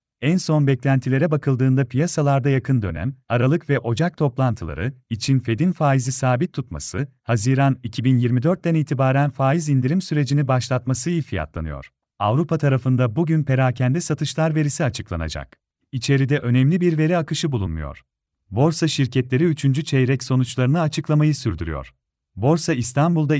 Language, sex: Turkish, male